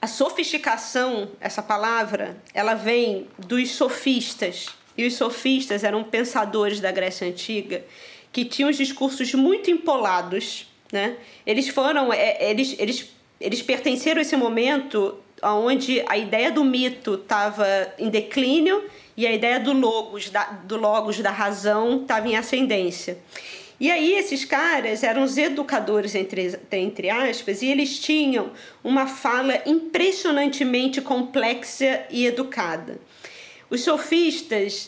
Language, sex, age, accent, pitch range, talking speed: Portuguese, female, 20-39, Brazilian, 210-275 Hz, 125 wpm